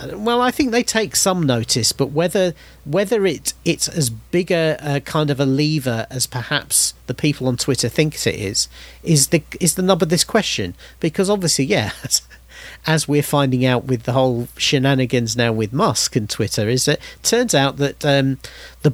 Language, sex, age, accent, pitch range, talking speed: English, male, 40-59, British, 125-170 Hz, 195 wpm